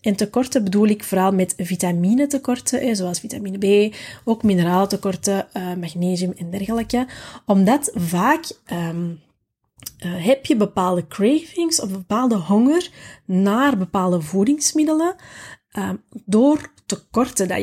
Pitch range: 185-235 Hz